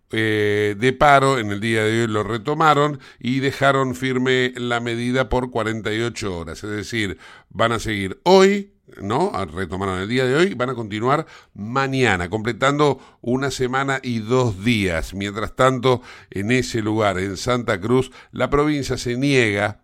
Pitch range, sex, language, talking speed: 105-130 Hz, male, Spanish, 160 wpm